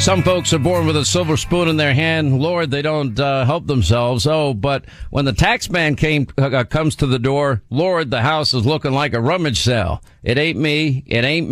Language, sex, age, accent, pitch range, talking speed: English, male, 50-69, American, 115-145 Hz, 225 wpm